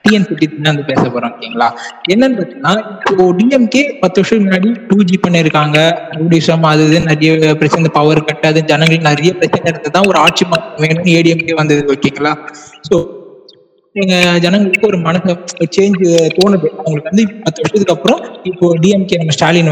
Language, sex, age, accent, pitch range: Tamil, male, 20-39, native, 155-200 Hz